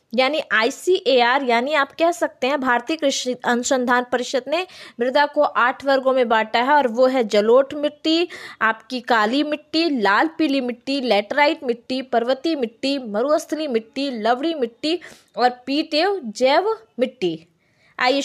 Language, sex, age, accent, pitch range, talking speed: Hindi, female, 20-39, native, 240-315 Hz, 140 wpm